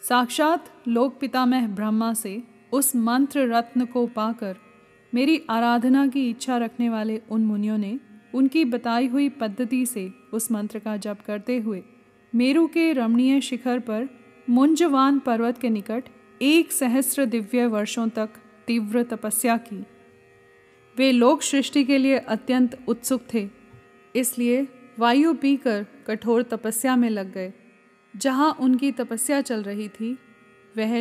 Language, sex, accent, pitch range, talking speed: Hindi, female, native, 215-250 Hz, 135 wpm